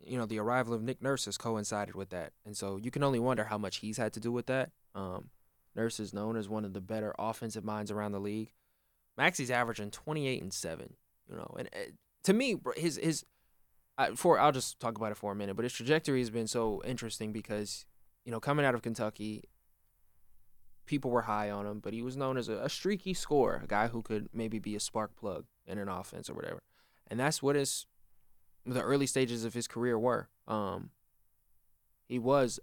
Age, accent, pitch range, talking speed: 20-39, American, 105-130 Hz, 220 wpm